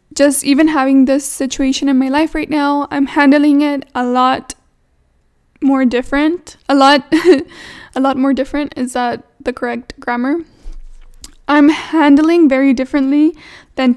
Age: 10-29